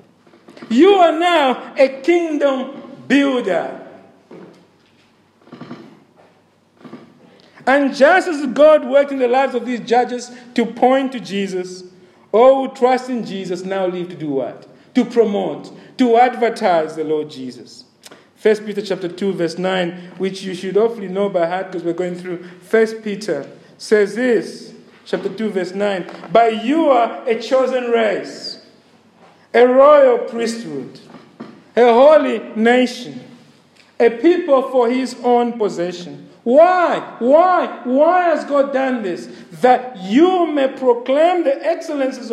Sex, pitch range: male, 195-270 Hz